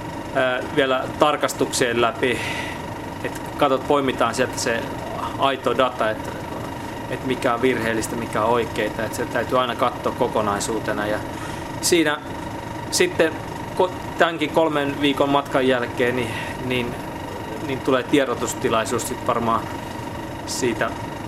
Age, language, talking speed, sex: 20-39, Finnish, 105 wpm, male